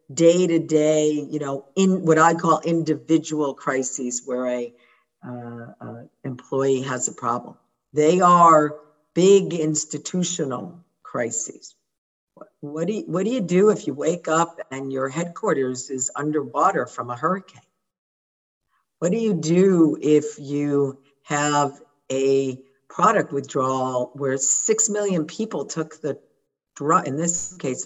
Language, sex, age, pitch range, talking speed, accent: English, female, 50-69, 135-170 Hz, 125 wpm, American